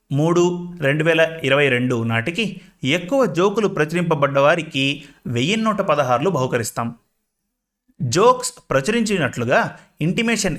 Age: 30-49